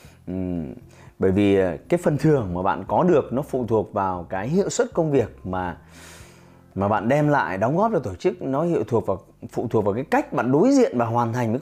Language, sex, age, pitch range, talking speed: Vietnamese, male, 20-39, 110-175 Hz, 230 wpm